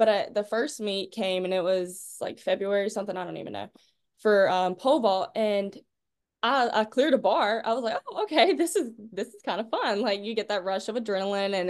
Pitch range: 195-230 Hz